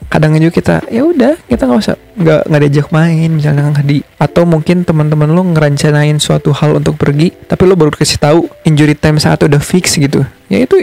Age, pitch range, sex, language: 20-39, 145-175 Hz, male, Indonesian